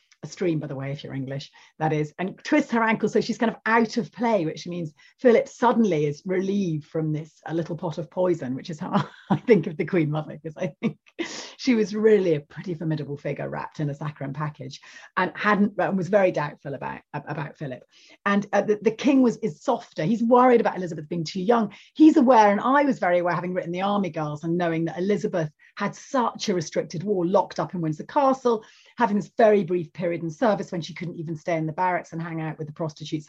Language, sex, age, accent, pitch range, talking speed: English, female, 30-49, British, 165-230 Hz, 235 wpm